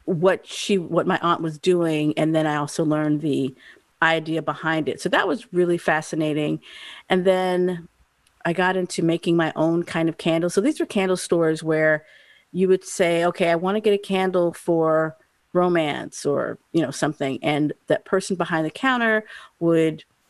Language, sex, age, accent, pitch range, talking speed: English, female, 40-59, American, 160-195 Hz, 180 wpm